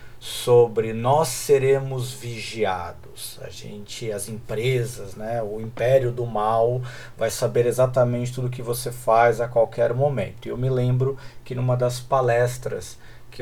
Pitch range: 115-135 Hz